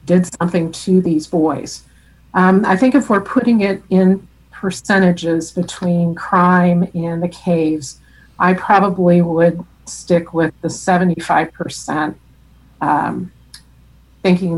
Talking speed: 115 wpm